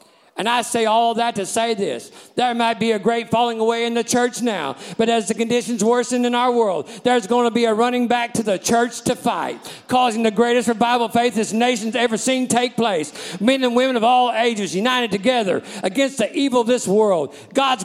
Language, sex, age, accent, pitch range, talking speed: English, male, 50-69, American, 230-265 Hz, 220 wpm